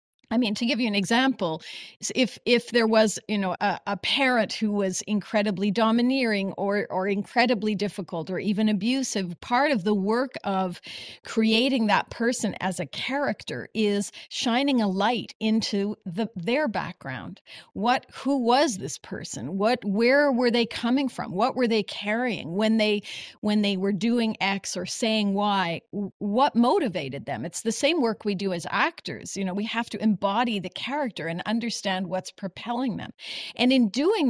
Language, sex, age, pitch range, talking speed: English, female, 40-59, 200-250 Hz, 170 wpm